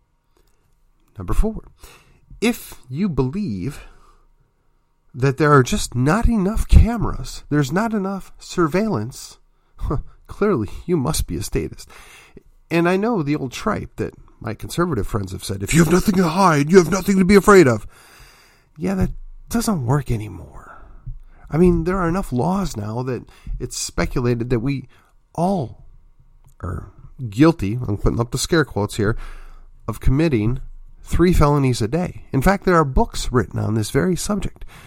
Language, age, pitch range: English, 40-59, 115-170 Hz